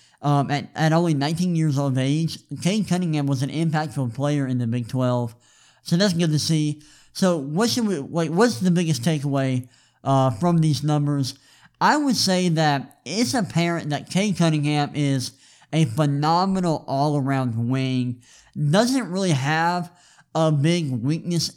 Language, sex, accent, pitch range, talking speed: English, male, American, 140-170 Hz, 155 wpm